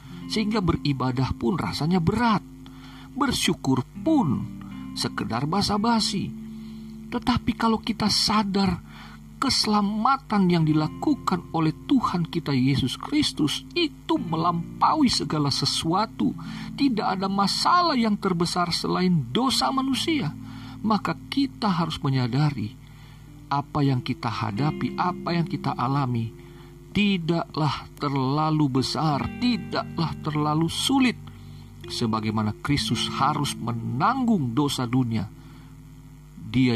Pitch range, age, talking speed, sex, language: 120-180 Hz, 50-69, 95 wpm, male, Indonesian